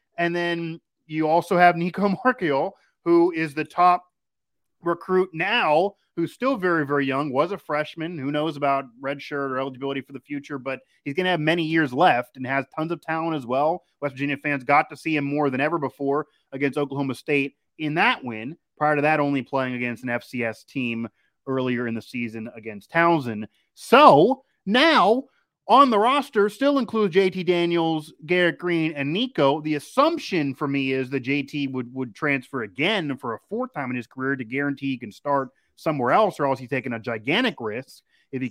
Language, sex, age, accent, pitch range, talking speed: English, male, 30-49, American, 135-170 Hz, 195 wpm